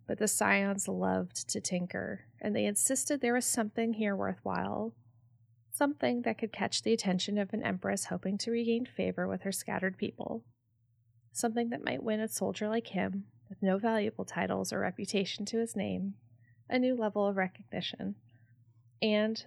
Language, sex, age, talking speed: English, female, 20-39, 165 wpm